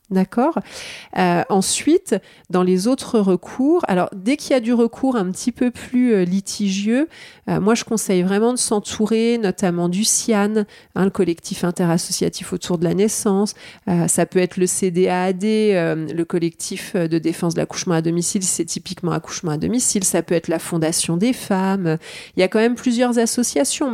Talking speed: 175 wpm